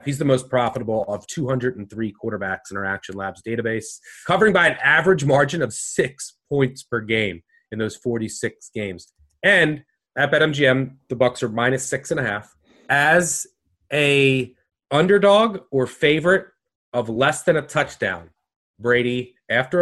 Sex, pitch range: male, 115-150 Hz